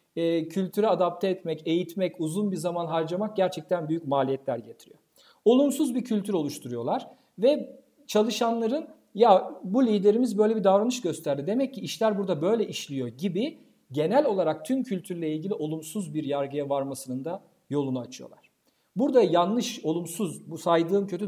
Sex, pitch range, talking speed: male, 155-230 Hz, 140 wpm